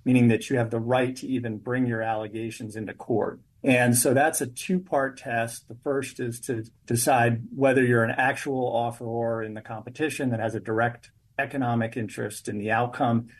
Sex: male